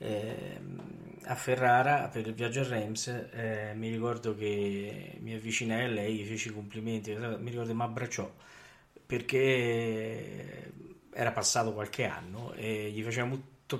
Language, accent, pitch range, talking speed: Italian, native, 110-135 Hz, 150 wpm